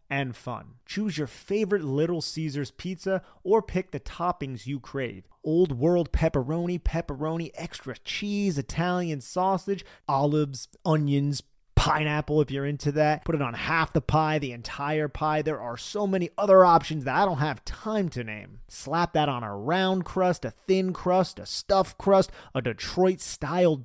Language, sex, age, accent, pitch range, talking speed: English, male, 30-49, American, 140-200 Hz, 165 wpm